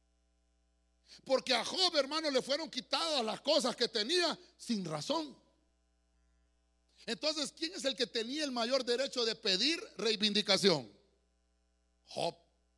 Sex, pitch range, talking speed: male, 185-275 Hz, 120 wpm